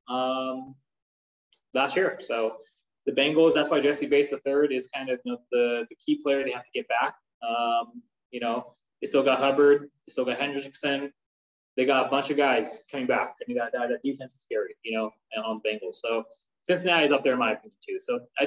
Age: 20-39